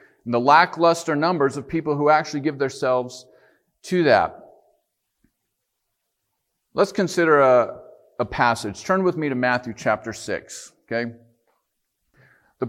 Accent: American